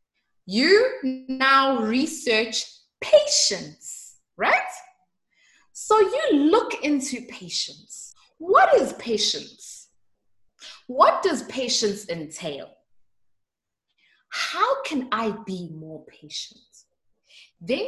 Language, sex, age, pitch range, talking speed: English, female, 20-39, 210-300 Hz, 80 wpm